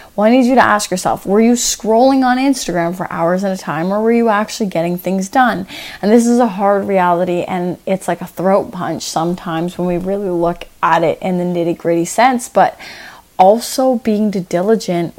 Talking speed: 205 wpm